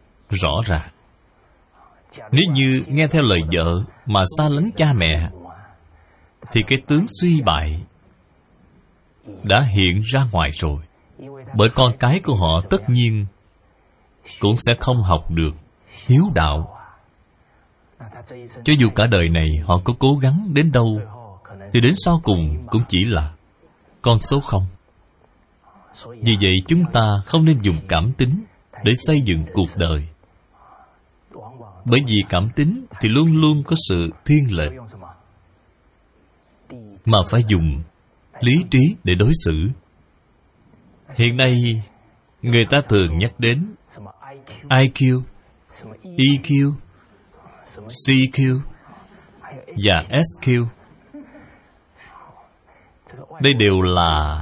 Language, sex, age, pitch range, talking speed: Vietnamese, male, 20-39, 90-135 Hz, 115 wpm